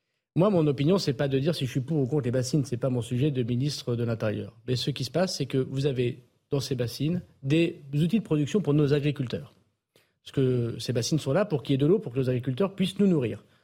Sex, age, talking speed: male, 40-59, 275 wpm